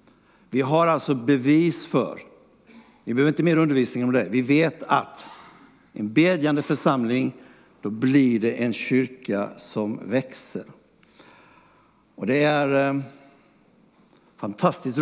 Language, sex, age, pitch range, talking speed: Swedish, male, 60-79, 110-160 Hz, 115 wpm